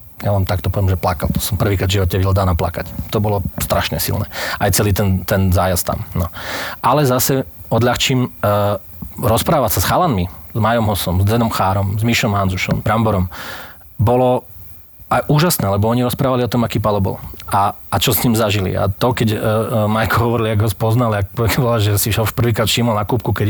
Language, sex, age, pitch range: Slovak, male, 30-49, 100-115 Hz